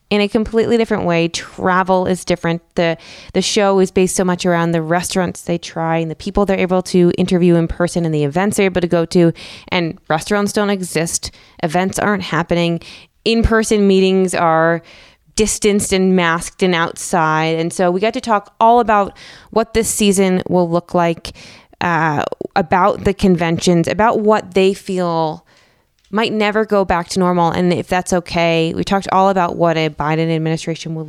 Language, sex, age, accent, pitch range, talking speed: English, female, 20-39, American, 165-195 Hz, 180 wpm